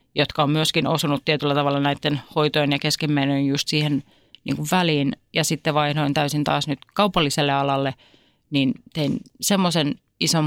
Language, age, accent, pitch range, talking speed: Finnish, 30-49, native, 145-175 Hz, 150 wpm